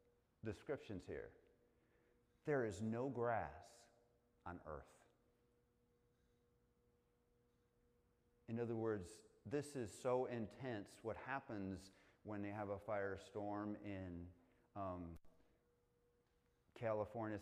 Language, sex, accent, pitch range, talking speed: English, male, American, 95-120 Hz, 85 wpm